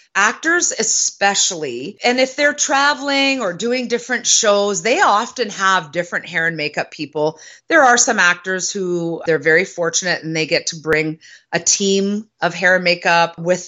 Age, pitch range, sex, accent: 30-49, 175-230 Hz, female, American